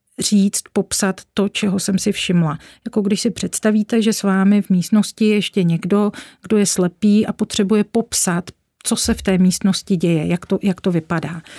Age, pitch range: 40-59, 190-210 Hz